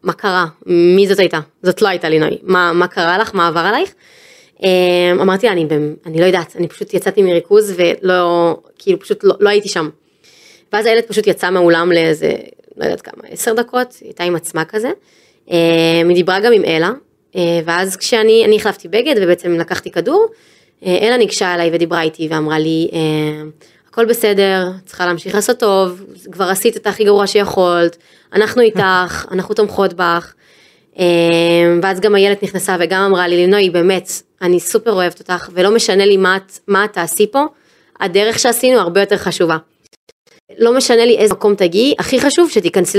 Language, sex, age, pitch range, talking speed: Hebrew, female, 20-39, 175-230 Hz, 170 wpm